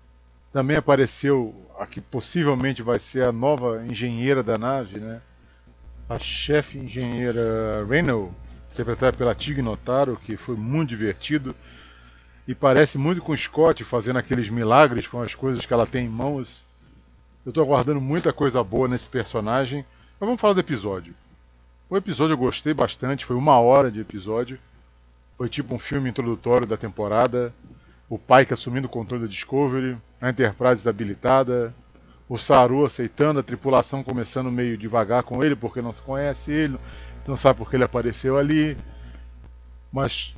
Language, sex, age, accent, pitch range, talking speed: Portuguese, male, 40-59, Brazilian, 100-135 Hz, 160 wpm